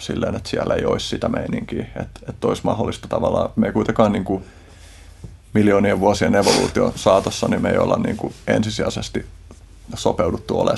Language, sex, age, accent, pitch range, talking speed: Finnish, male, 30-49, native, 85-105 Hz, 155 wpm